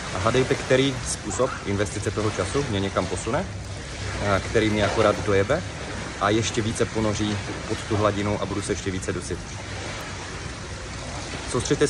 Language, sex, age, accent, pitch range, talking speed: Czech, male, 30-49, native, 95-110 Hz, 140 wpm